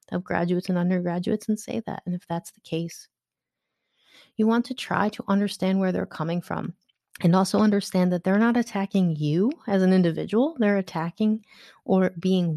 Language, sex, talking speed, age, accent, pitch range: English, female, 175 wpm, 30-49, American, 175-205 Hz